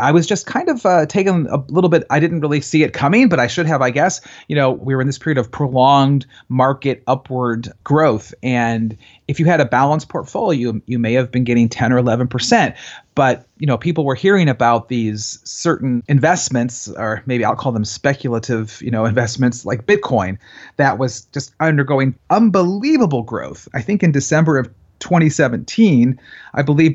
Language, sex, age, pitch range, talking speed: English, male, 30-49, 120-160 Hz, 190 wpm